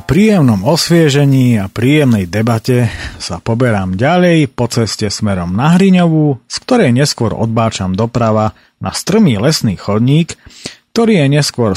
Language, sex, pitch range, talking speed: Slovak, male, 105-140 Hz, 135 wpm